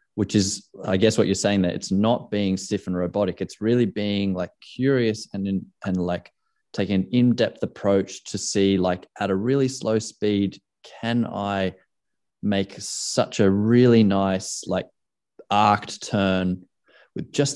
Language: English